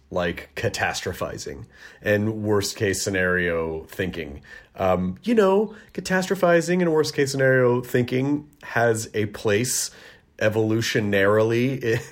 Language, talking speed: English, 90 wpm